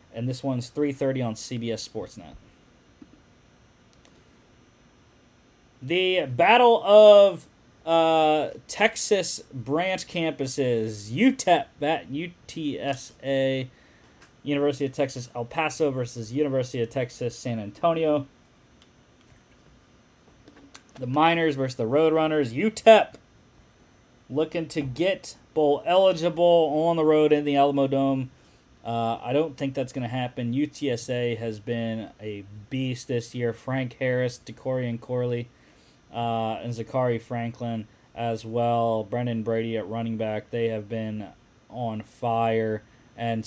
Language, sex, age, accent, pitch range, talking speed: English, male, 30-49, American, 115-155 Hz, 115 wpm